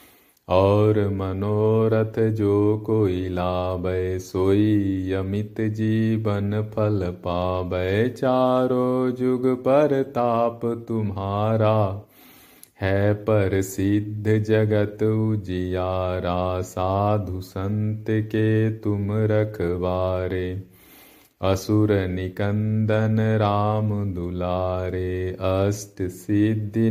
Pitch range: 95-110 Hz